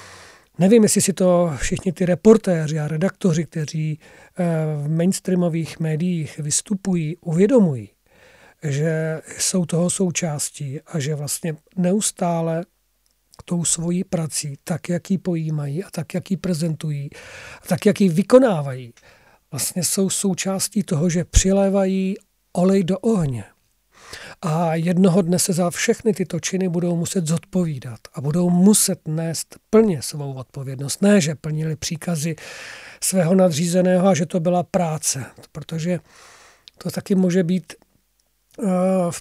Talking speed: 125 wpm